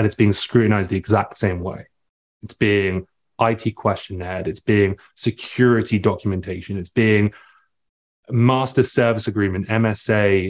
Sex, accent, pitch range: male, British, 100-115 Hz